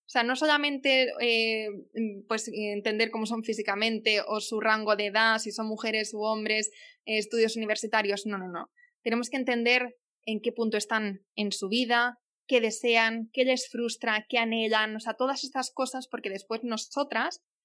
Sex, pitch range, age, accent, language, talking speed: female, 215-255 Hz, 20-39, Spanish, Spanish, 170 wpm